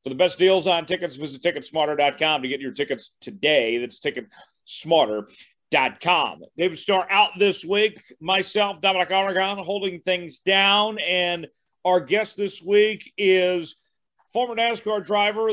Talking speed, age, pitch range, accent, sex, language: 135 wpm, 40-59, 170-210 Hz, American, male, English